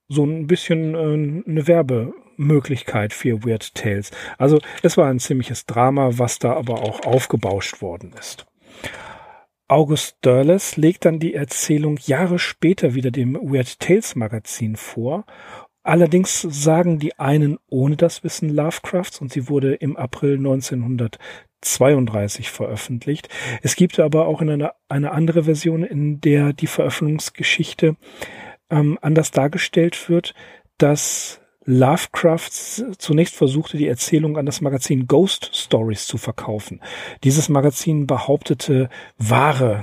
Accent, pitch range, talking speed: German, 125-160 Hz, 125 wpm